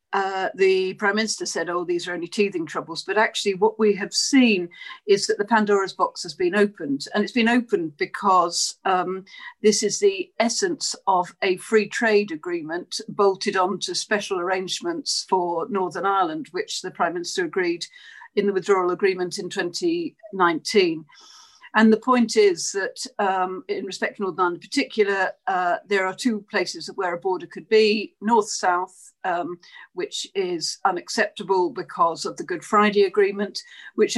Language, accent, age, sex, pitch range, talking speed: English, British, 50-69, female, 190-285 Hz, 165 wpm